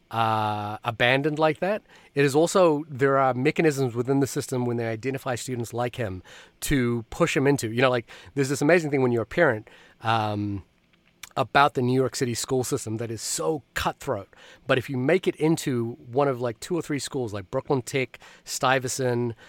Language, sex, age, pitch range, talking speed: English, male, 30-49, 115-140 Hz, 195 wpm